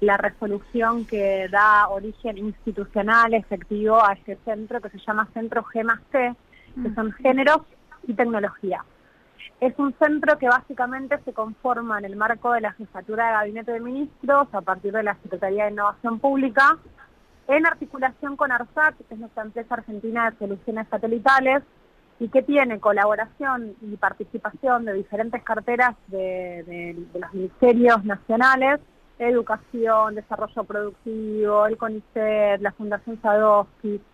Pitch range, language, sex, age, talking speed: 205-245 Hz, Spanish, female, 20-39, 140 wpm